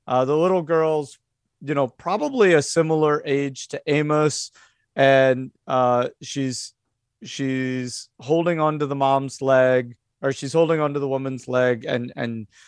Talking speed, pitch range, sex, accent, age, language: 150 wpm, 120-150 Hz, male, American, 40-59, English